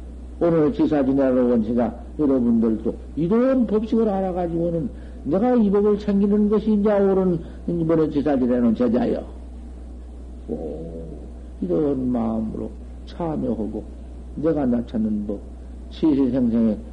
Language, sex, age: Korean, male, 50-69